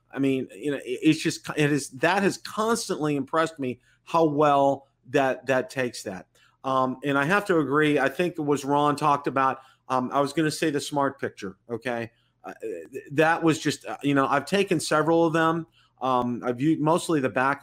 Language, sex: English, male